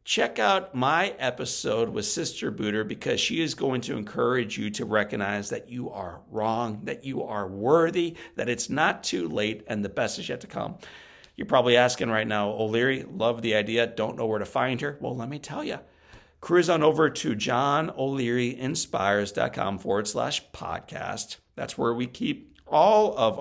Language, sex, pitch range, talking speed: English, male, 110-130 Hz, 180 wpm